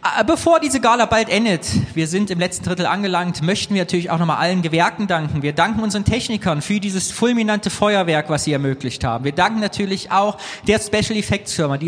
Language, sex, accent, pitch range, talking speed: German, male, German, 160-205 Hz, 200 wpm